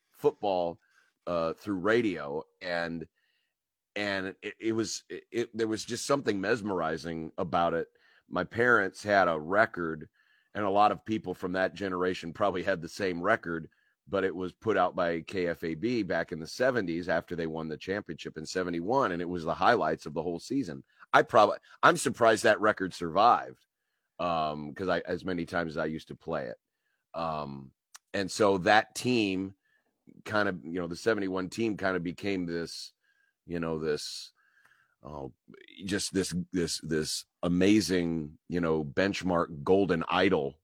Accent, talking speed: American, 165 wpm